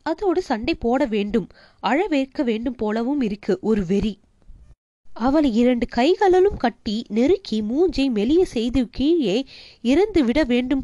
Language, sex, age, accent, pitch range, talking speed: Tamil, female, 20-39, native, 220-300 Hz, 115 wpm